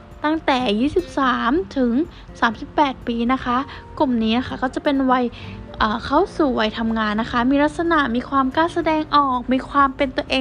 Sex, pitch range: female, 230-270 Hz